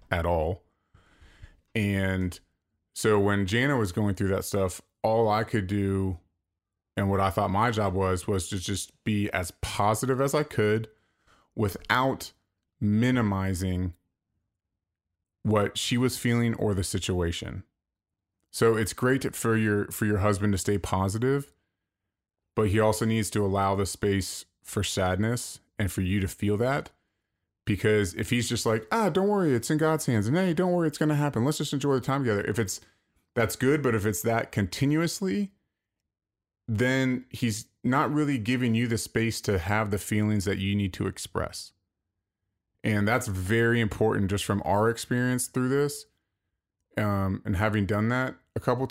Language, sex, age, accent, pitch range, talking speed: English, male, 30-49, American, 95-115 Hz, 165 wpm